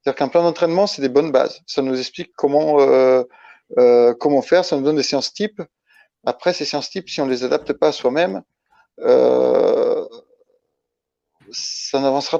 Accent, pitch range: French, 130-170 Hz